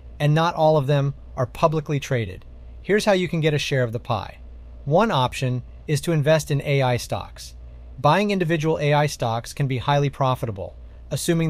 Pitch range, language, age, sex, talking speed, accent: 110-150 Hz, English, 30-49, male, 185 wpm, American